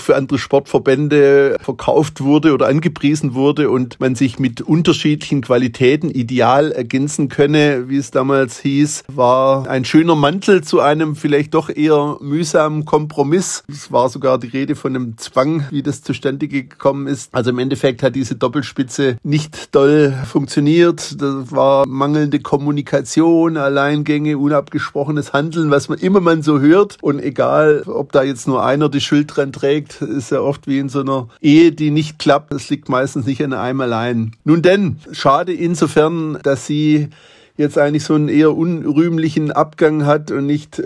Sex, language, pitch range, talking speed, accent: male, German, 130-150 Hz, 165 wpm, German